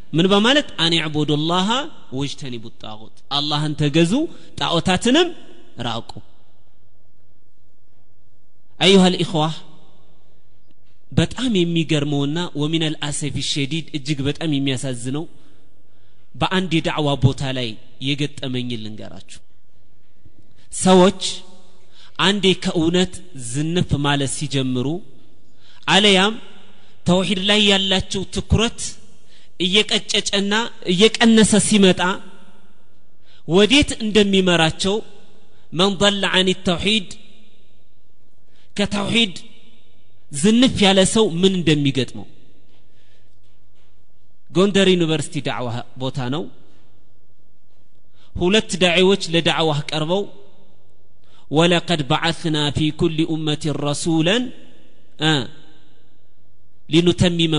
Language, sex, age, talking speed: Amharic, male, 30-49, 75 wpm